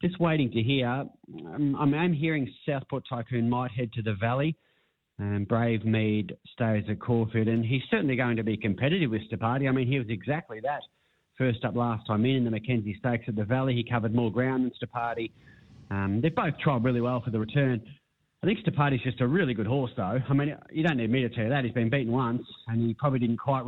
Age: 30-49